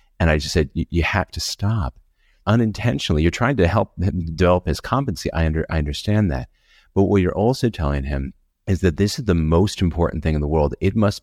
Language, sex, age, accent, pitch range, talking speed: English, male, 40-59, American, 75-105 Hz, 220 wpm